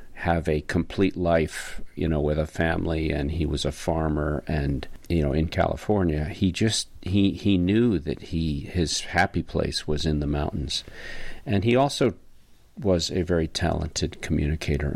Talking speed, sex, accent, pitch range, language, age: 165 wpm, male, American, 75-90 Hz, English, 50-69